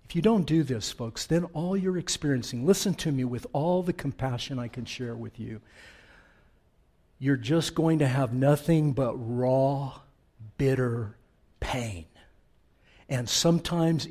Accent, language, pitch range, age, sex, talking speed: American, English, 130-180 Hz, 60-79, male, 145 wpm